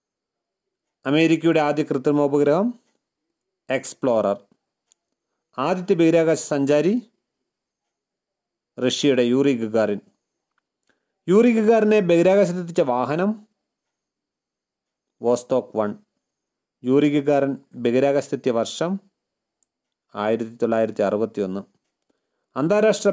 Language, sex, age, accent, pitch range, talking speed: Malayalam, male, 30-49, native, 125-195 Hz, 50 wpm